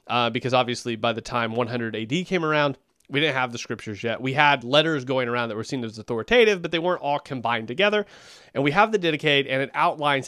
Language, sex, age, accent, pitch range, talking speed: English, male, 30-49, American, 135-200 Hz, 235 wpm